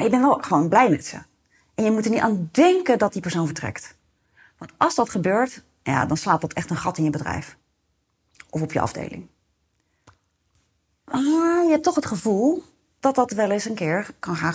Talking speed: 200 wpm